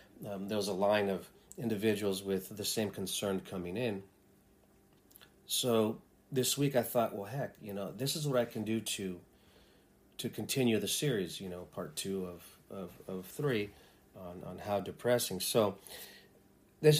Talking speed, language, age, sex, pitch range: 165 wpm, English, 40-59, male, 95-120 Hz